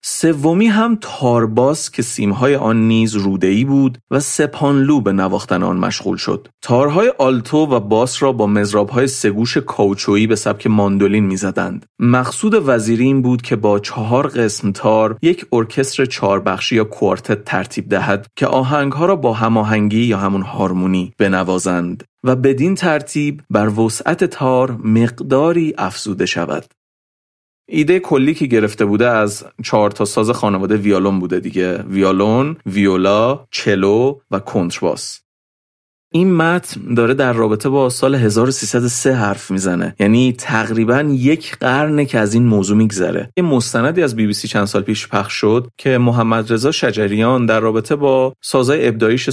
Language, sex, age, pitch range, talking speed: Persian, male, 30-49, 105-135 Hz, 145 wpm